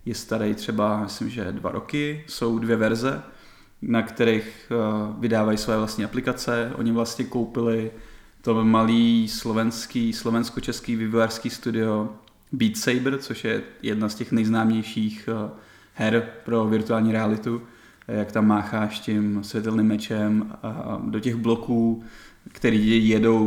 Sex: male